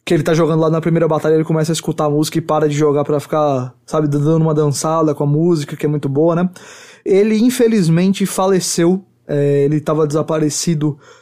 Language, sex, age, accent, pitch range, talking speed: English, male, 20-39, Brazilian, 150-175 Hz, 210 wpm